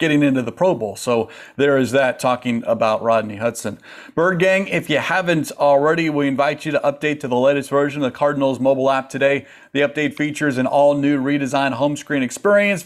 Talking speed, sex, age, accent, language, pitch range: 200 wpm, male, 40-59, American, English, 135-160 Hz